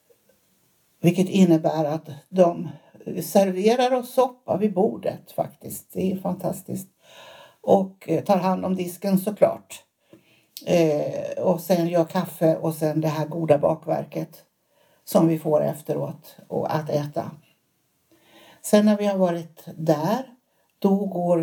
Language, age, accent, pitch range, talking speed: Swedish, 60-79, native, 165-190 Hz, 120 wpm